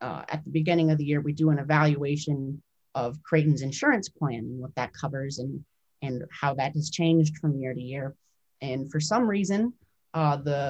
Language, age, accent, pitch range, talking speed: English, 30-49, American, 150-175 Hz, 195 wpm